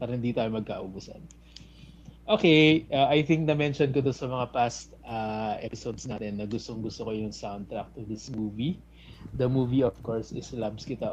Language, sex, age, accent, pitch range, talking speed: Filipino, male, 20-39, native, 110-140 Hz, 150 wpm